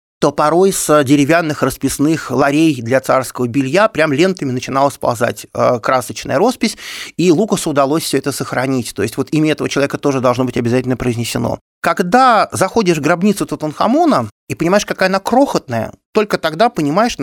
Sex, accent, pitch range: male, native, 125-160 Hz